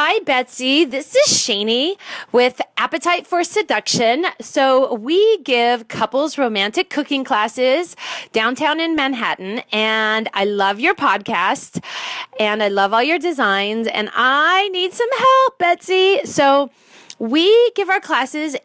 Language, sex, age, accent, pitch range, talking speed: English, female, 30-49, American, 195-285 Hz, 130 wpm